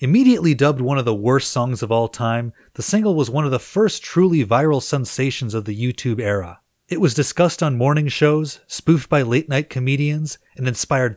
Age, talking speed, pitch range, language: 30-49, 195 wpm, 110-150 Hz, English